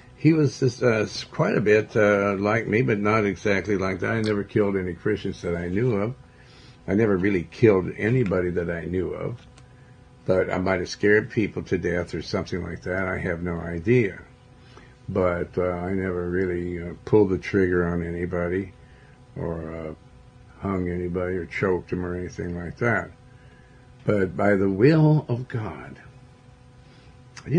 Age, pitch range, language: 60-79, 90-125 Hz, English